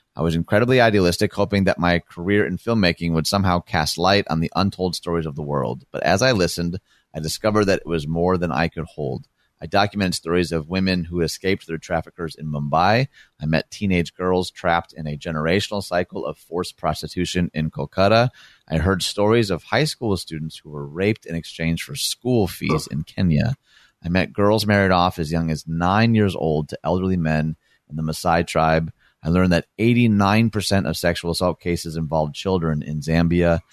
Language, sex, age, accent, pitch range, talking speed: English, male, 30-49, American, 80-95 Hz, 190 wpm